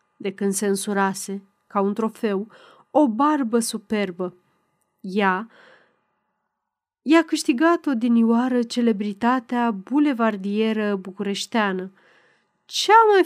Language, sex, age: Romanian, female, 30-49